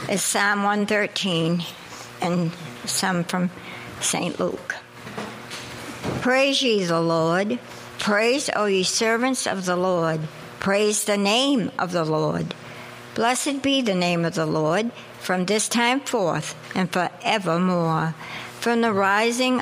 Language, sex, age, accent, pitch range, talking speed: English, male, 60-79, American, 180-235 Hz, 130 wpm